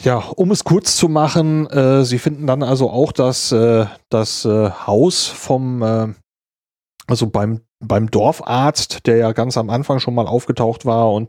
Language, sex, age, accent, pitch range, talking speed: German, male, 40-59, German, 115-150 Hz, 180 wpm